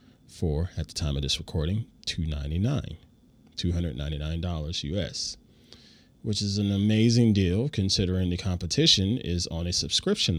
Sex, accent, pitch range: male, American, 80-105 Hz